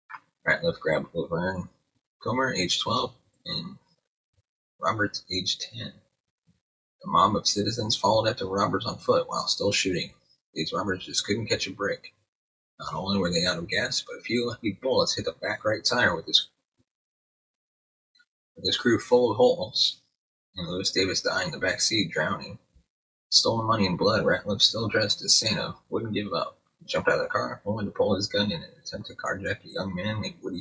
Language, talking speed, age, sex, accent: English, 185 wpm, 30-49, male, American